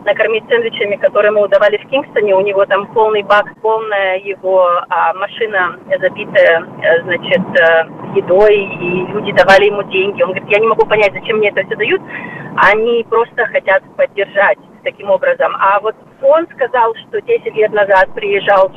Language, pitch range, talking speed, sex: Russian, 195-270 Hz, 165 wpm, female